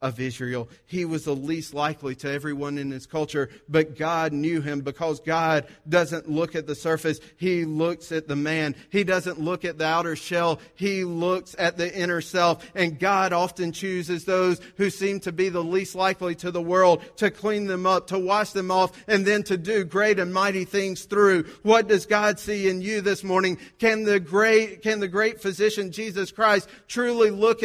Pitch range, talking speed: 140-210 Hz, 195 wpm